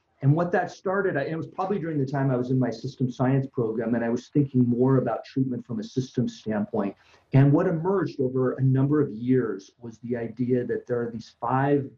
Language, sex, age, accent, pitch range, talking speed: English, male, 40-59, American, 115-140 Hz, 220 wpm